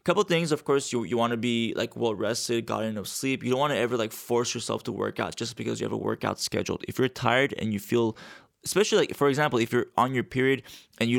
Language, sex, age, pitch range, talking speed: English, male, 20-39, 115-140 Hz, 275 wpm